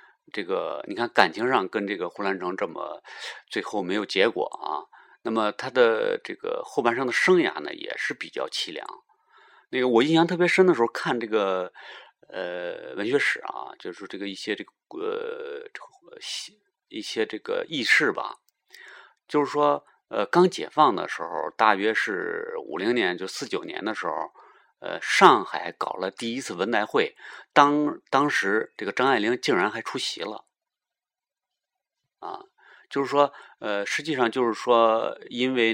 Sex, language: male, Chinese